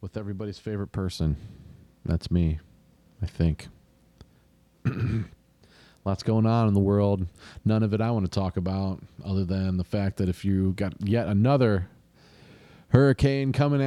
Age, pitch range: 40-59, 90-120 Hz